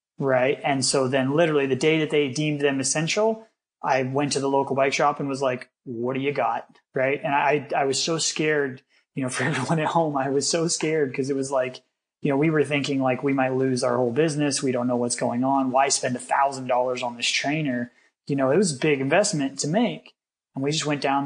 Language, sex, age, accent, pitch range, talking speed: English, male, 20-39, American, 130-150 Hz, 245 wpm